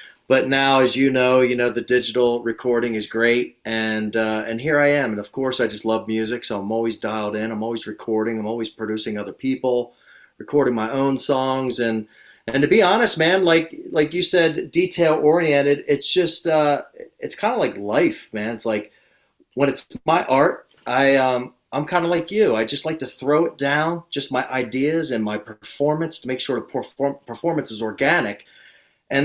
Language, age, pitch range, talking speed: English, 30-49, 110-145 Hz, 200 wpm